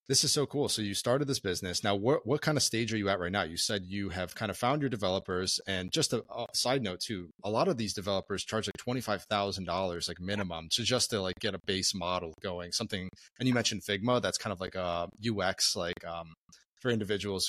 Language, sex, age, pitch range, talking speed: English, male, 30-49, 90-110 Hz, 245 wpm